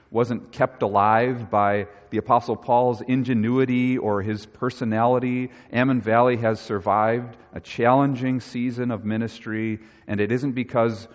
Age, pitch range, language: 40-59, 100-120 Hz, English